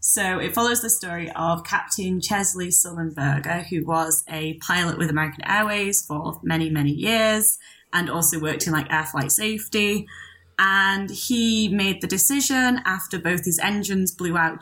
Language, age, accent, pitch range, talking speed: English, 20-39, British, 160-200 Hz, 160 wpm